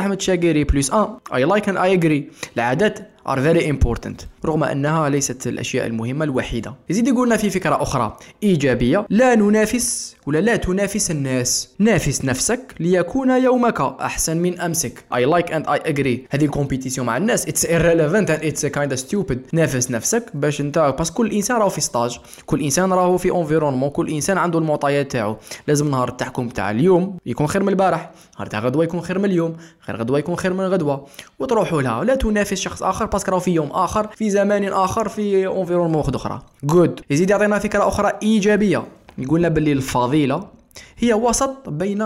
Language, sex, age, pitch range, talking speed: Arabic, male, 20-39, 140-200 Hz, 160 wpm